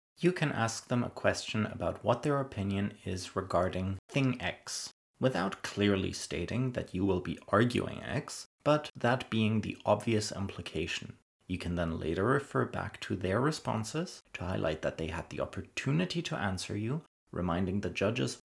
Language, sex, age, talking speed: English, male, 30-49, 165 wpm